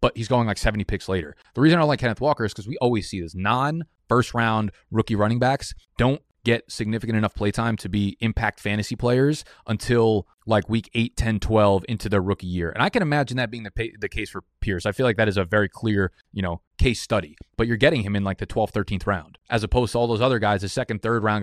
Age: 20-39